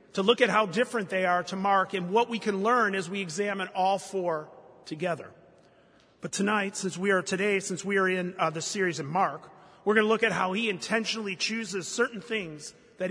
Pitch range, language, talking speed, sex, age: 175-210 Hz, English, 215 wpm, male, 40-59